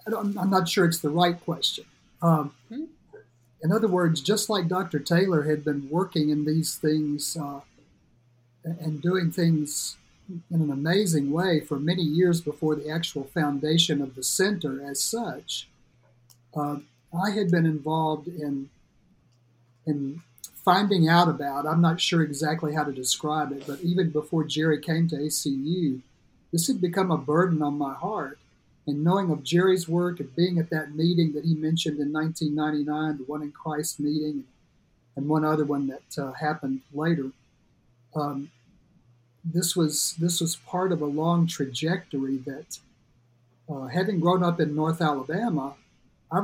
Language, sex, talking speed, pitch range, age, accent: English, male, 155 wpm, 145-170 Hz, 50-69, American